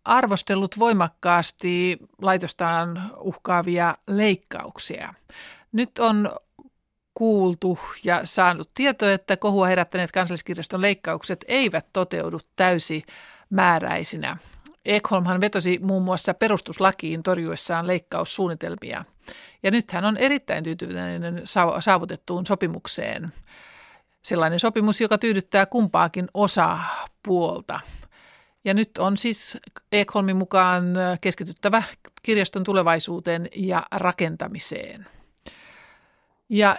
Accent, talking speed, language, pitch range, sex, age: native, 85 wpm, Finnish, 175-210 Hz, male, 50-69